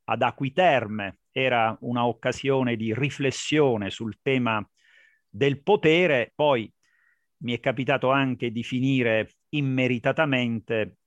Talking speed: 100 wpm